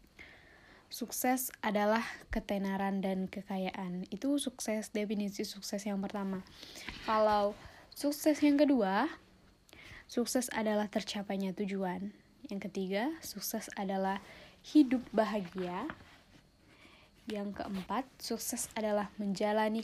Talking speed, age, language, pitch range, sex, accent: 90 wpm, 10-29, Indonesian, 200-230 Hz, female, native